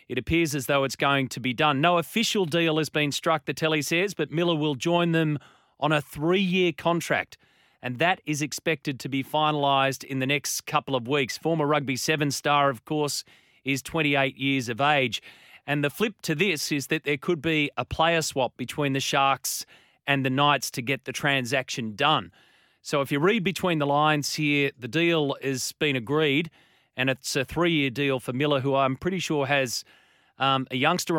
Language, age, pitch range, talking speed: English, 30-49, 135-160 Hz, 200 wpm